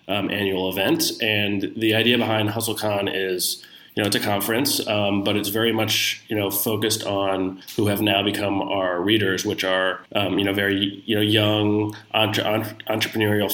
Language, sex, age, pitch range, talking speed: English, male, 20-39, 100-110 Hz, 175 wpm